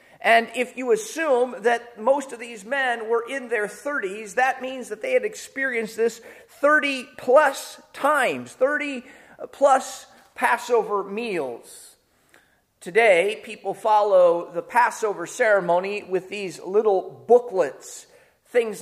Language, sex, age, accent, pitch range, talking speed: English, male, 30-49, American, 220-275 Hz, 120 wpm